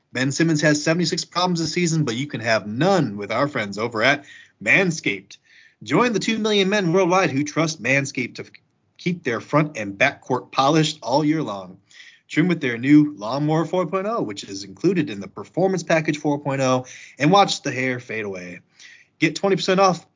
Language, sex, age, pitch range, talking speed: English, male, 30-49, 115-165 Hz, 180 wpm